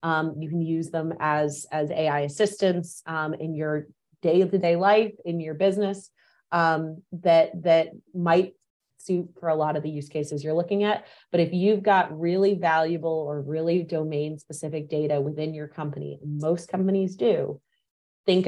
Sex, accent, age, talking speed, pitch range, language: female, American, 30-49, 160 wpm, 150-170 Hz, English